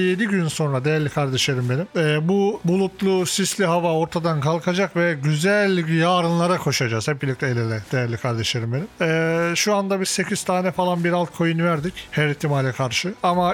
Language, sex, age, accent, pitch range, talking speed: Turkish, male, 40-59, native, 145-185 Hz, 170 wpm